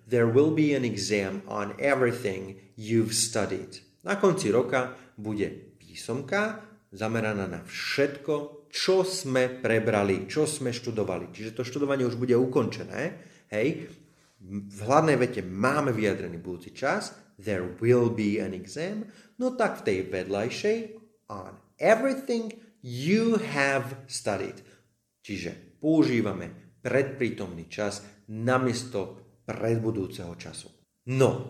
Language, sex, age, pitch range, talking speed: Slovak, male, 30-49, 100-140 Hz, 115 wpm